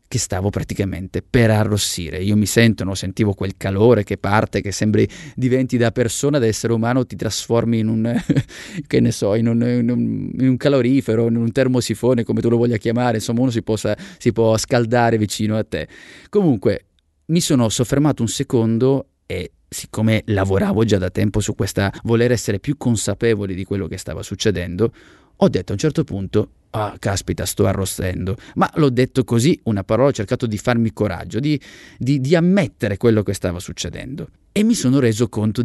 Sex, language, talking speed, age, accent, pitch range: male, Italian, 185 wpm, 20-39, native, 105-130 Hz